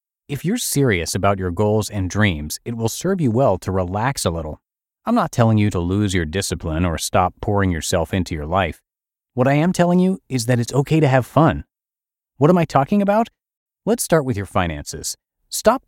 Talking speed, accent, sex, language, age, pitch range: 210 wpm, American, male, English, 30-49, 90-140 Hz